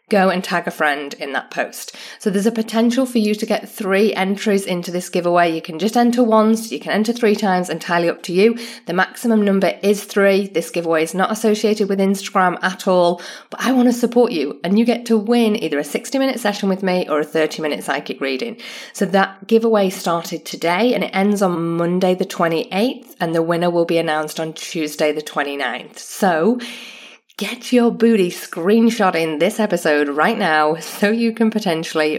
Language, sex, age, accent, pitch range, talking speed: English, female, 30-49, British, 165-225 Hz, 200 wpm